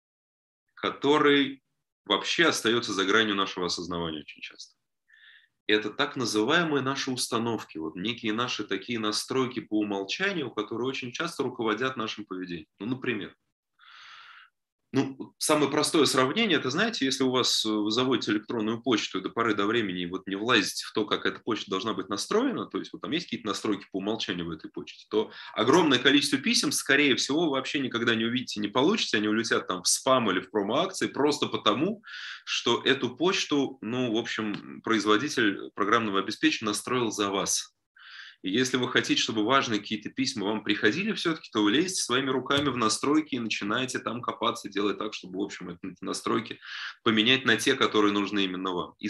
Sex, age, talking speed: male, 20-39, 170 wpm